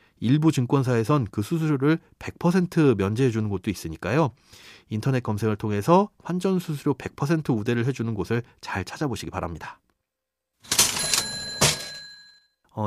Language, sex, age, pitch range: Korean, male, 30-49, 105-165 Hz